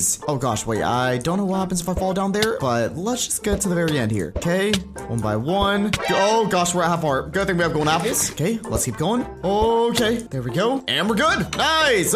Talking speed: 245 wpm